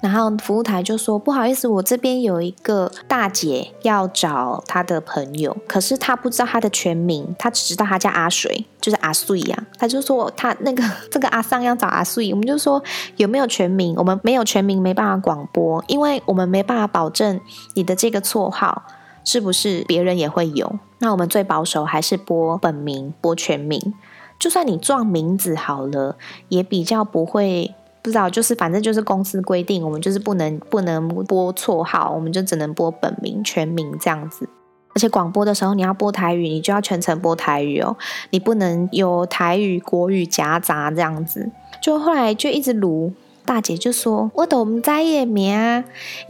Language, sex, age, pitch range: Chinese, female, 20-39, 175-230 Hz